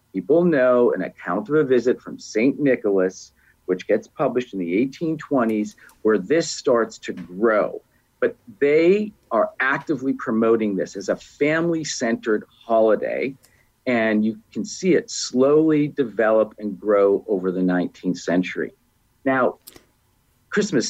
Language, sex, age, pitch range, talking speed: English, male, 50-69, 100-125 Hz, 130 wpm